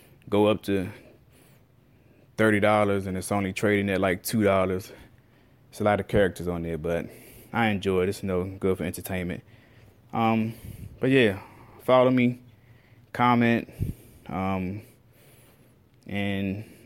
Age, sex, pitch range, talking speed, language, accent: 20-39, male, 95-120 Hz, 125 wpm, English, American